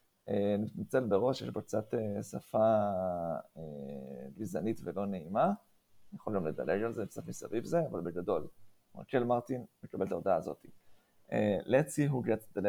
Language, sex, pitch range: English, male, 100-125 Hz